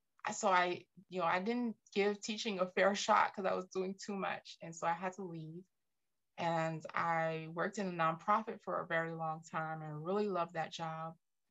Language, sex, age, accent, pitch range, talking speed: English, female, 20-39, American, 160-200 Hz, 205 wpm